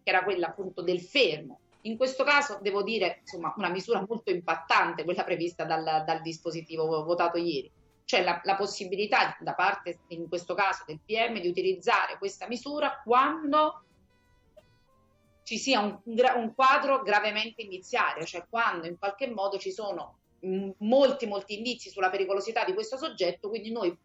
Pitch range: 185-245 Hz